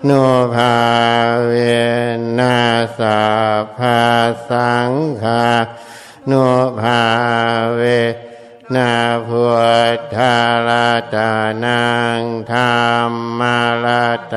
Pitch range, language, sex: 115-125 Hz, Thai, male